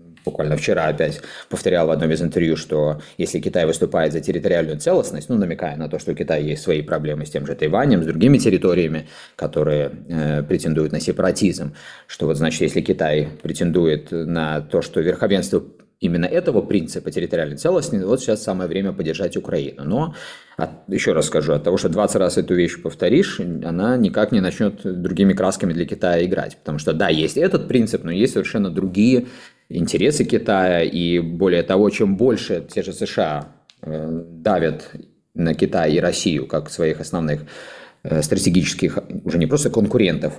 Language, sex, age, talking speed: Russian, male, 30-49, 165 wpm